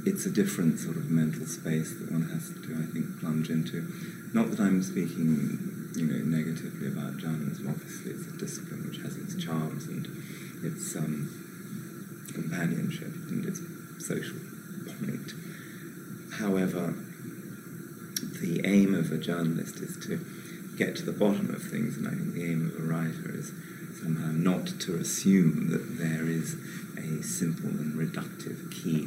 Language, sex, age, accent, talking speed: English, male, 30-49, British, 155 wpm